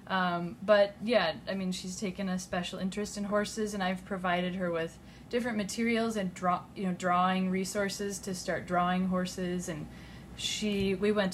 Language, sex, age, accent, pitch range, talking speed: English, female, 20-39, American, 180-210 Hz, 175 wpm